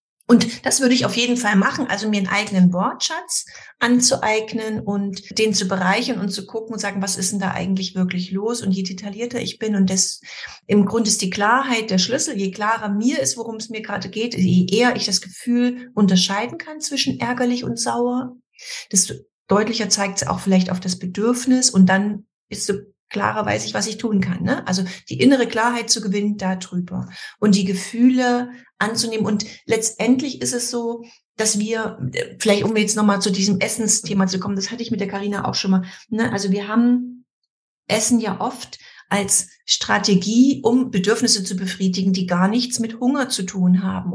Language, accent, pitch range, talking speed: German, German, 195-235 Hz, 195 wpm